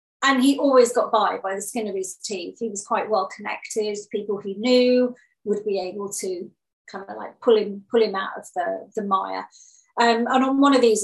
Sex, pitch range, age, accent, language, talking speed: female, 200-250 Hz, 40-59, British, English, 225 wpm